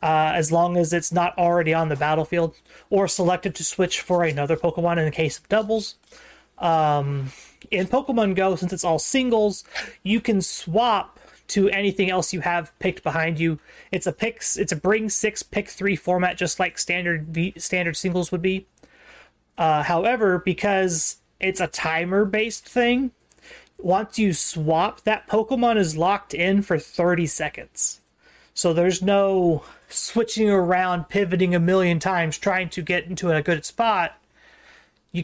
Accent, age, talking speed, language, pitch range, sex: American, 30-49, 160 wpm, English, 170-205 Hz, male